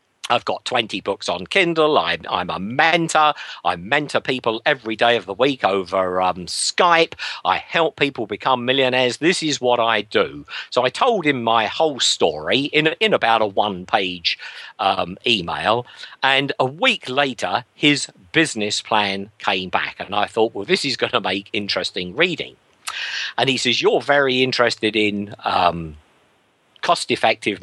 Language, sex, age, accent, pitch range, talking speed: English, male, 50-69, British, 115-155 Hz, 160 wpm